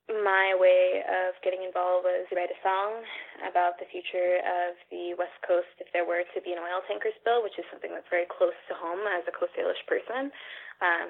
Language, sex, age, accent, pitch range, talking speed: English, female, 10-29, American, 180-215 Hz, 210 wpm